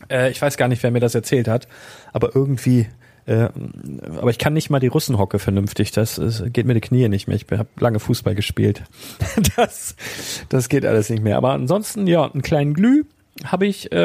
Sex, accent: male, German